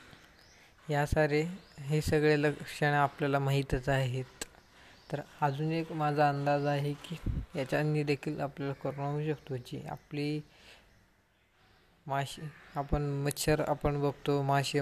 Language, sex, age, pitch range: Marathi, female, 20-39, 140-150 Hz